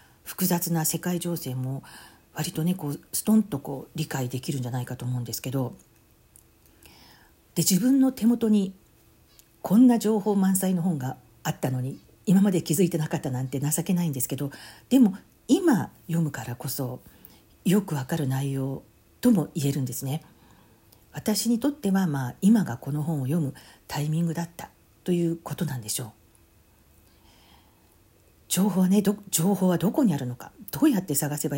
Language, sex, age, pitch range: Japanese, female, 50-69, 130-185 Hz